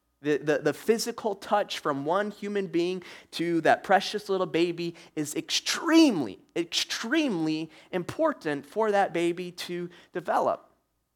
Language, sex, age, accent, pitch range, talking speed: English, male, 20-39, American, 140-200 Hz, 125 wpm